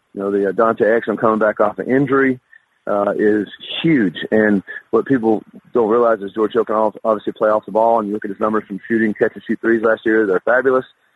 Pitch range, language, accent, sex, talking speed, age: 105-115 Hz, English, American, male, 245 wpm, 40-59